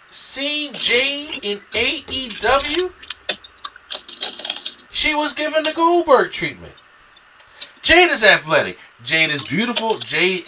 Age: 30-49